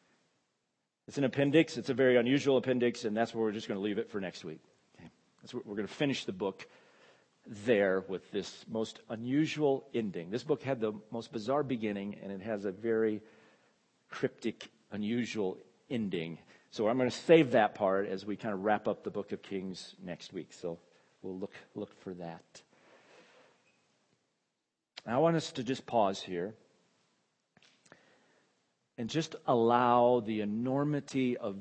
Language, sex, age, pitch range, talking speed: English, male, 50-69, 100-130 Hz, 165 wpm